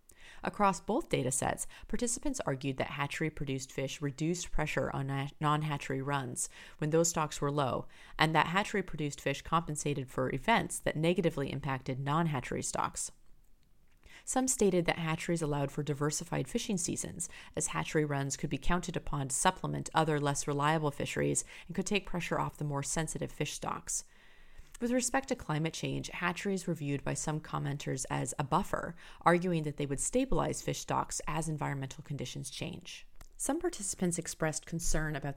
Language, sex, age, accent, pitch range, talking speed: English, female, 30-49, American, 140-175 Hz, 165 wpm